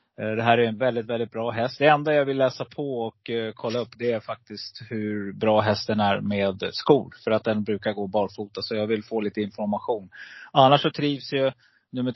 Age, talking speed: 30-49, 215 wpm